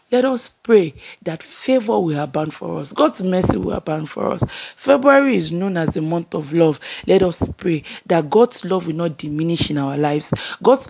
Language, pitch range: English, 165-230 Hz